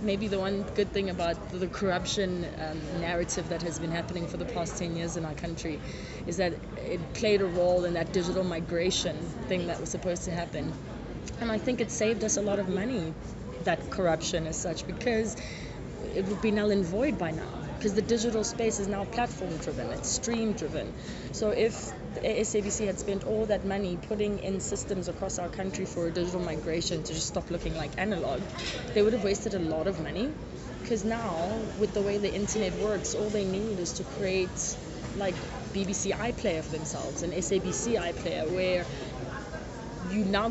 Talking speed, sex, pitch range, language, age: 190 wpm, female, 170-210 Hz, English, 20-39